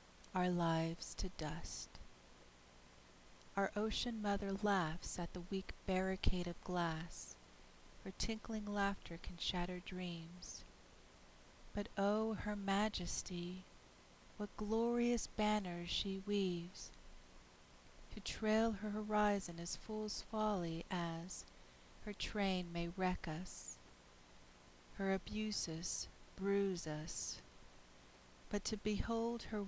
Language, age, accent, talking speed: English, 40-59, American, 100 wpm